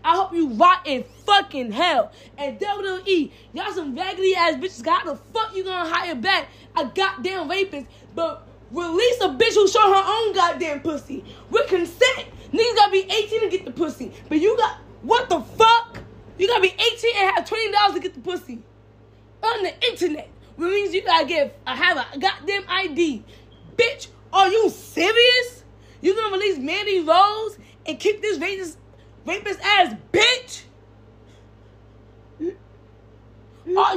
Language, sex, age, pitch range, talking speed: English, female, 10-29, 325-420 Hz, 155 wpm